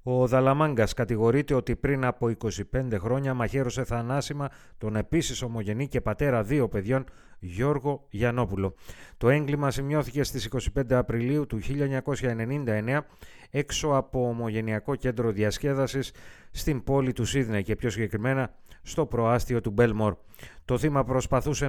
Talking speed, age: 130 wpm, 30-49